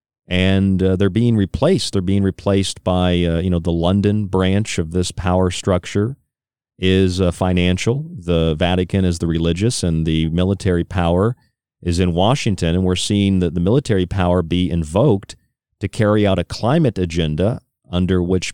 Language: English